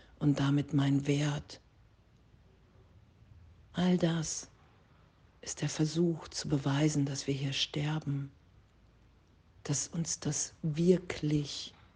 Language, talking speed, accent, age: German, 95 wpm, German, 50-69